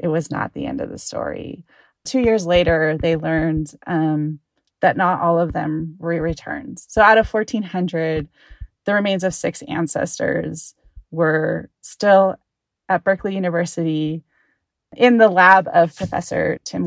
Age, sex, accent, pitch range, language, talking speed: 20-39, female, American, 170-210 Hz, English, 145 wpm